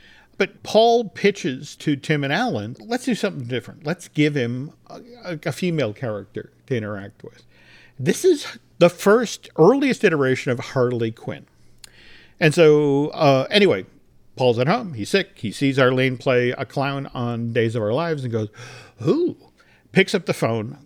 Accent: American